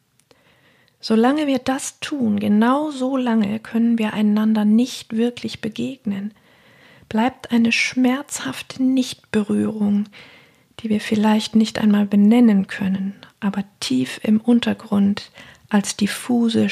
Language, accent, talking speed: German, German, 110 wpm